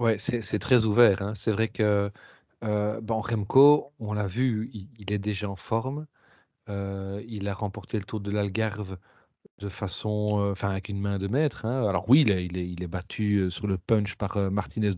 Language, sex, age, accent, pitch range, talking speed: French, male, 40-59, French, 100-125 Hz, 210 wpm